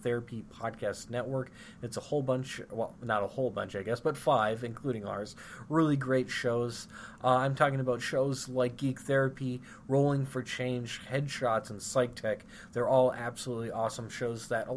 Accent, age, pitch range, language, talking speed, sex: American, 20-39, 115-135 Hz, English, 175 wpm, male